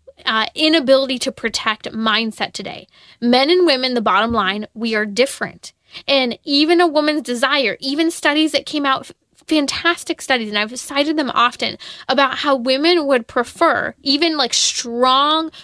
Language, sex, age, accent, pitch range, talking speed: English, female, 10-29, American, 245-310 Hz, 150 wpm